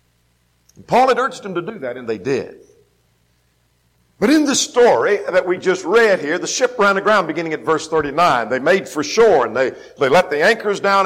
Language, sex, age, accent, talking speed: English, male, 50-69, American, 205 wpm